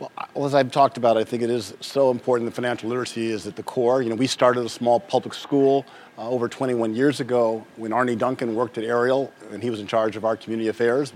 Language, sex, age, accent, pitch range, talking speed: English, male, 40-59, American, 115-145 Hz, 245 wpm